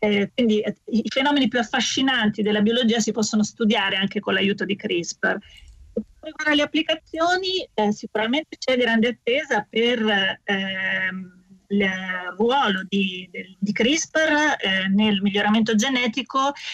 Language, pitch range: Italian, 210-240 Hz